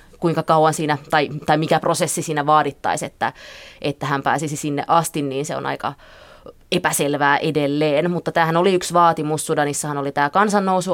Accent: native